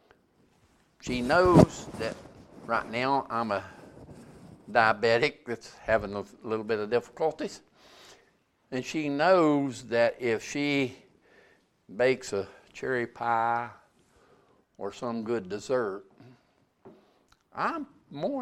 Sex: male